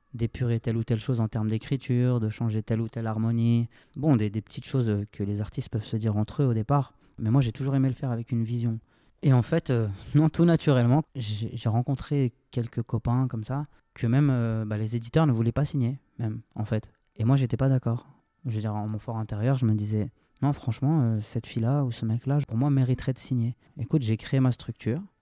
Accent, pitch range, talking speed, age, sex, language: French, 110-135 Hz, 240 wpm, 20-39, male, French